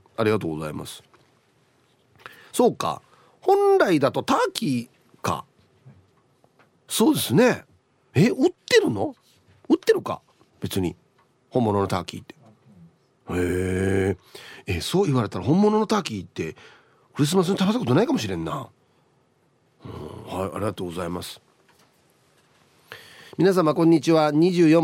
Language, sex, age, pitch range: Japanese, male, 40-59, 120-190 Hz